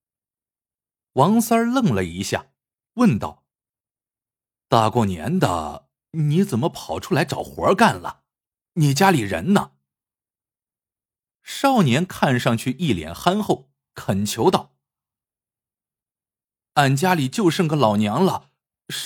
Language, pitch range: Chinese, 105-165 Hz